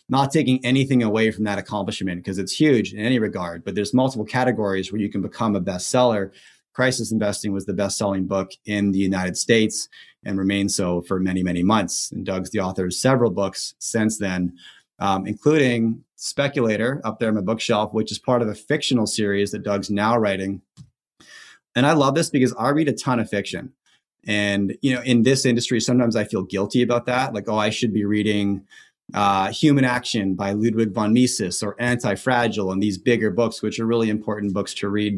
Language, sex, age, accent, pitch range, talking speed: English, male, 30-49, American, 100-120 Hz, 200 wpm